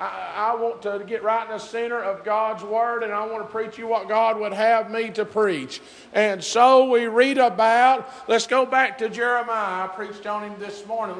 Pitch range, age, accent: 215-240 Hz, 50-69, American